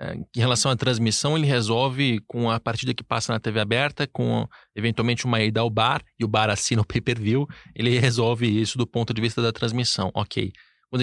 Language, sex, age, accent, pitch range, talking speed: Portuguese, male, 20-39, Brazilian, 110-130 Hz, 200 wpm